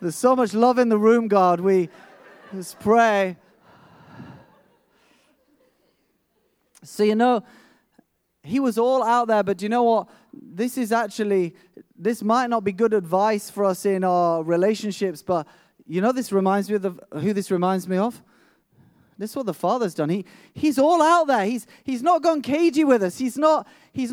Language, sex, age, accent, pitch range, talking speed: English, male, 30-49, British, 220-320 Hz, 175 wpm